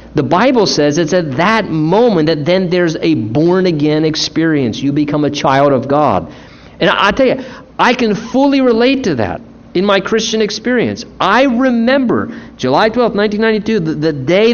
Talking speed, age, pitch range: 170 wpm, 50-69, 135-200 Hz